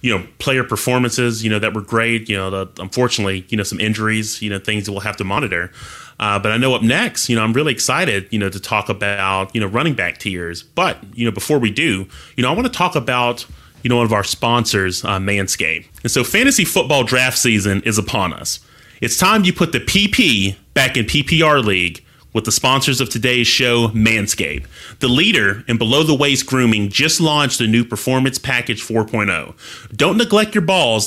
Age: 30-49